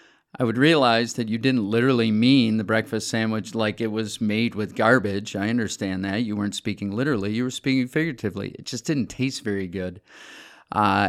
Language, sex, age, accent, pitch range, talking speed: English, male, 40-59, American, 105-130 Hz, 190 wpm